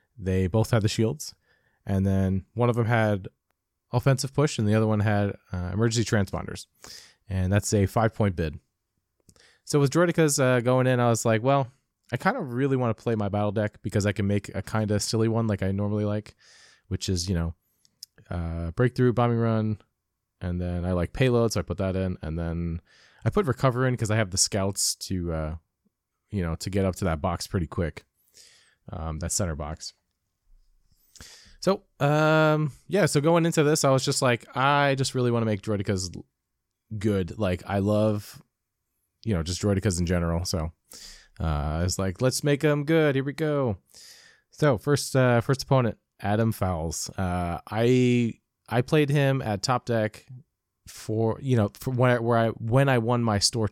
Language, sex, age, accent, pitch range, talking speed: English, male, 20-39, American, 95-125 Hz, 190 wpm